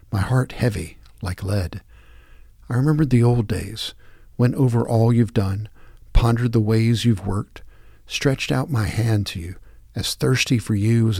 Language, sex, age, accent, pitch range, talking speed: English, male, 50-69, American, 100-125 Hz, 165 wpm